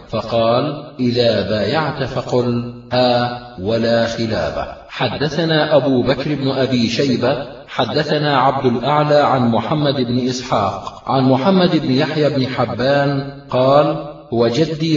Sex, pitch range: male, 130-150 Hz